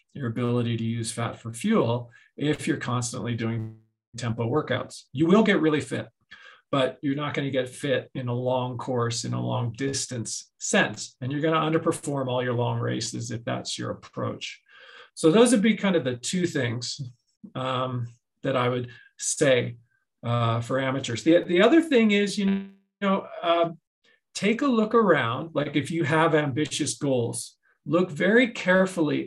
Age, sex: 40-59, male